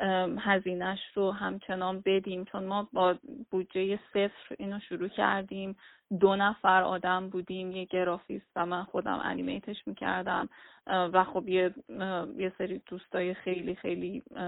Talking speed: 130 wpm